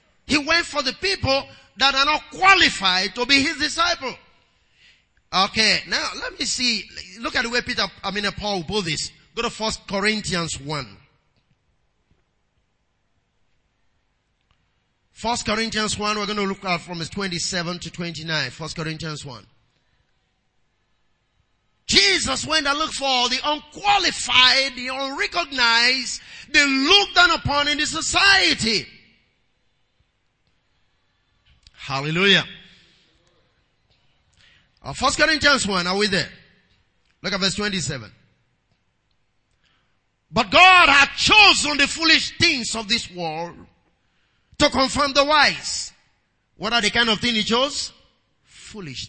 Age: 30-49